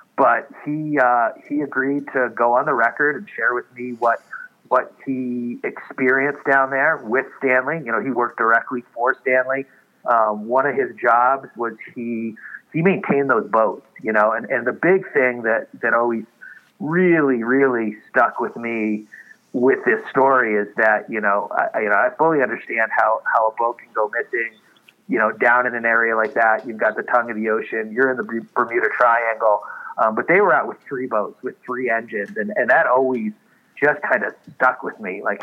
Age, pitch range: 40-59, 115-145 Hz